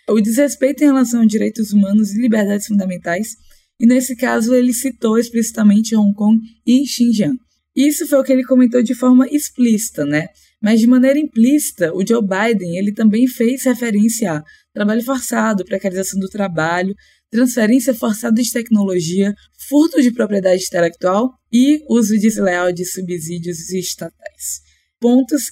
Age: 20-39